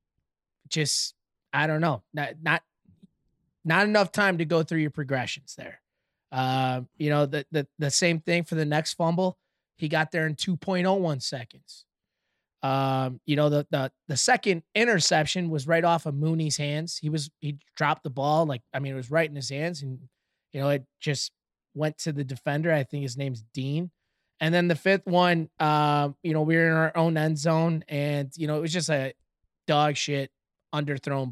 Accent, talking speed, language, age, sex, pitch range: American, 200 wpm, English, 20-39, male, 140-165 Hz